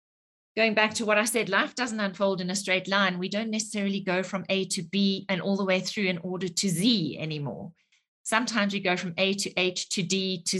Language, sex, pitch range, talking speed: English, female, 185-230 Hz, 230 wpm